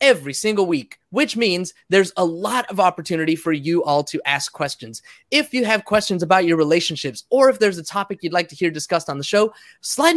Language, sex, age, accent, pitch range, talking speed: English, male, 20-39, American, 160-215 Hz, 220 wpm